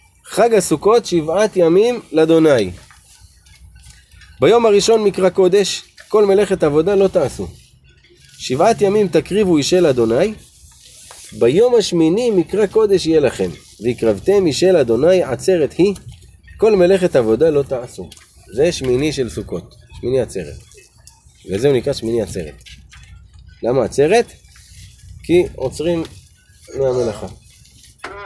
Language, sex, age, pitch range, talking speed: Hebrew, male, 30-49, 115-185 Hz, 110 wpm